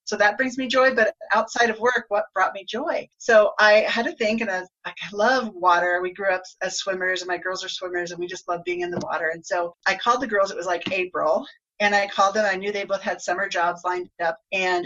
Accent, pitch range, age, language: American, 180-240 Hz, 40-59, English